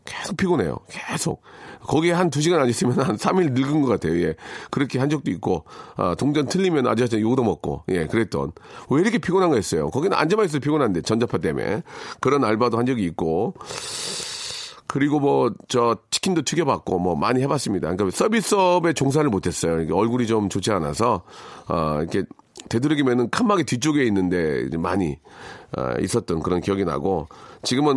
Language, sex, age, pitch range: Korean, male, 40-59, 100-150 Hz